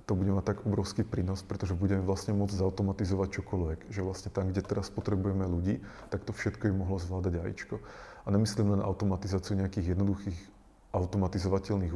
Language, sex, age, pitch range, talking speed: Czech, male, 30-49, 95-100 Hz, 165 wpm